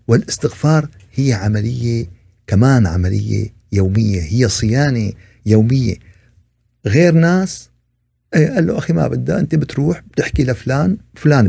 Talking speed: 110 wpm